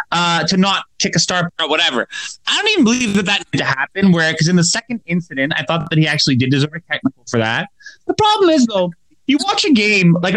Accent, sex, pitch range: American, male, 160-220 Hz